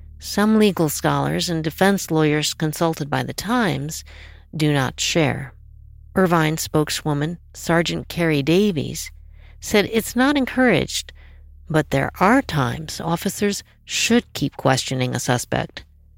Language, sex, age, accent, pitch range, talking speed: English, female, 50-69, American, 135-200 Hz, 120 wpm